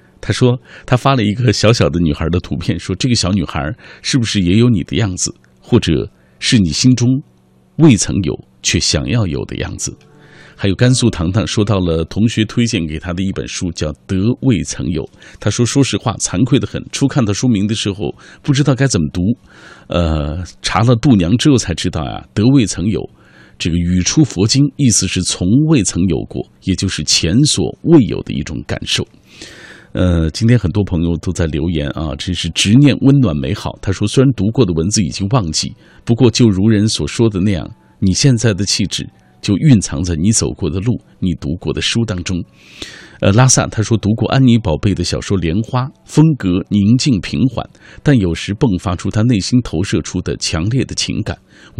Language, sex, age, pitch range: Chinese, male, 50-69, 85-120 Hz